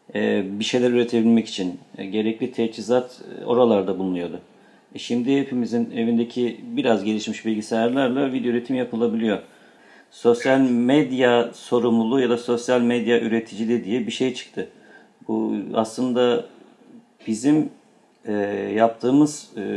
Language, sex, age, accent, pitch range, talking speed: Turkish, male, 50-69, native, 110-125 Hz, 100 wpm